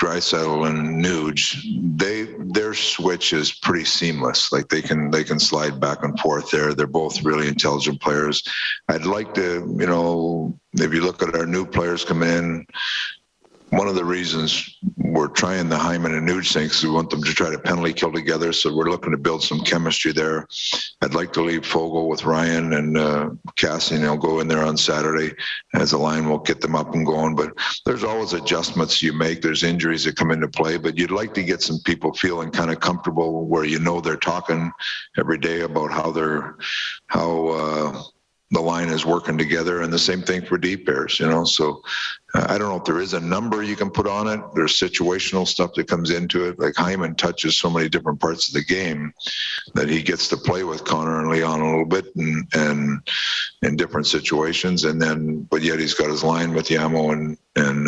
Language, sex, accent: English, male, American